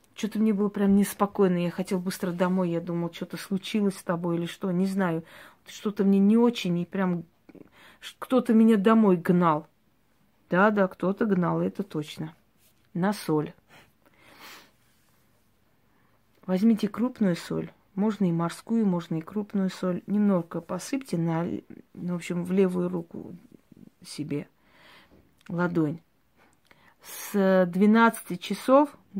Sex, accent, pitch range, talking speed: female, native, 175-210 Hz, 125 wpm